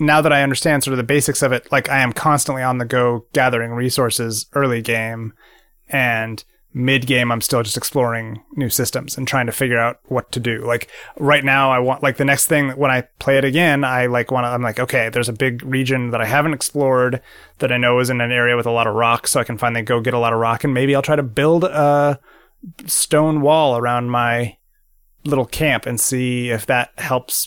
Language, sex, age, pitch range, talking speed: English, male, 30-49, 120-140 Hz, 235 wpm